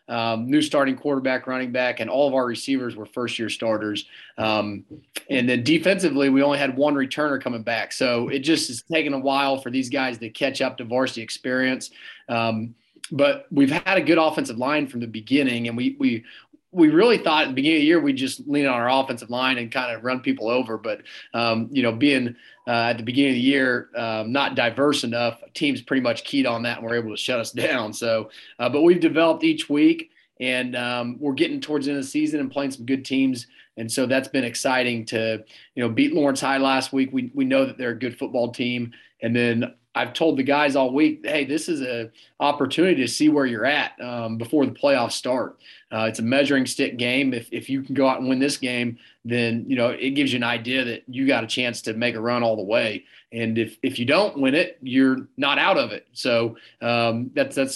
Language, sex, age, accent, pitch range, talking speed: English, male, 30-49, American, 120-145 Hz, 235 wpm